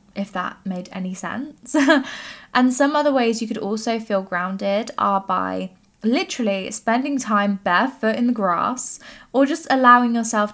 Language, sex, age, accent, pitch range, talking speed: English, female, 10-29, British, 195-250 Hz, 155 wpm